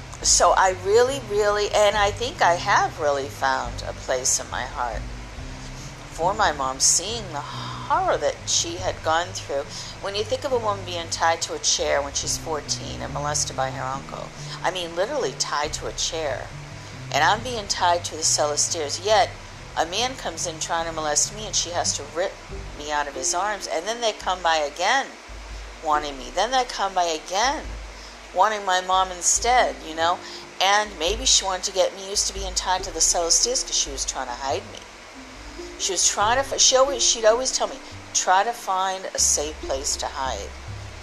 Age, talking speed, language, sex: 50-69, 205 wpm, English, female